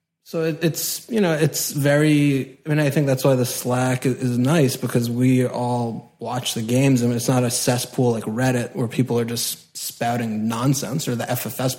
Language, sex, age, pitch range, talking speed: English, male, 20-39, 125-145 Hz, 195 wpm